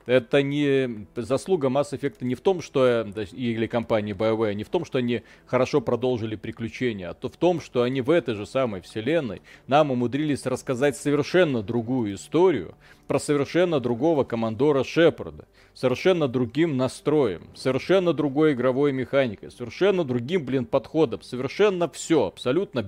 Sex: male